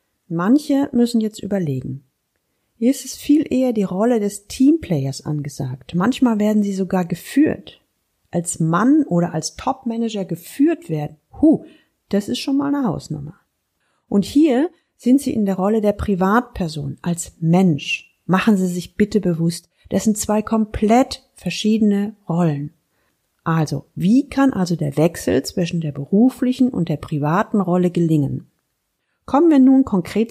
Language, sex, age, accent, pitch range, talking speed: German, female, 40-59, German, 170-240 Hz, 145 wpm